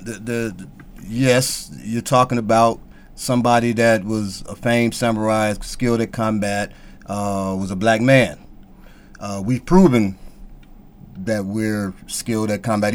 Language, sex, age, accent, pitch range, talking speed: English, male, 30-49, American, 105-145 Hz, 135 wpm